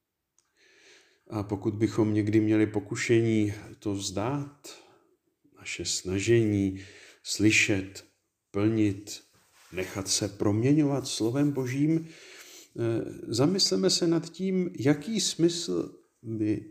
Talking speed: 85 wpm